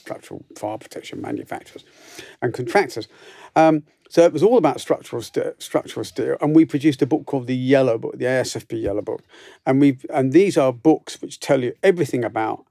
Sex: male